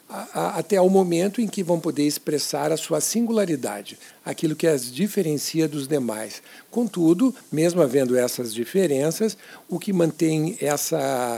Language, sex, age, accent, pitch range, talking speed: Portuguese, male, 60-79, Brazilian, 145-220 Hz, 135 wpm